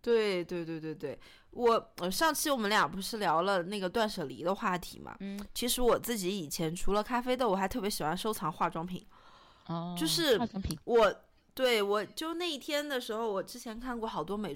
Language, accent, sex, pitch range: Chinese, native, female, 185-255 Hz